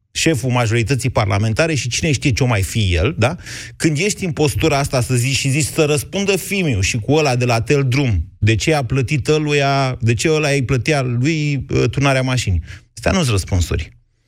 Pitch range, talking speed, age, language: 105-140 Hz, 200 wpm, 30-49, Romanian